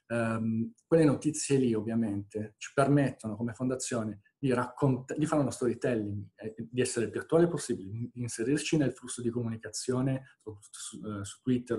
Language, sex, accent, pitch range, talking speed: Italian, male, native, 105-125 Hz, 165 wpm